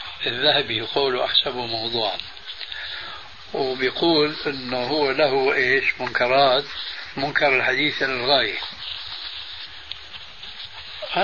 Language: Arabic